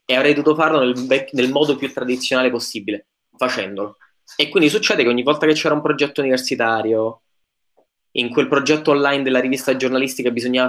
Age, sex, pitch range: 20-39, male, 115-135 Hz